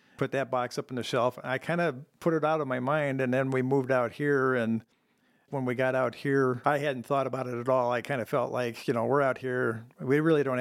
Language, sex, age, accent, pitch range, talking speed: English, male, 50-69, American, 115-140 Hz, 270 wpm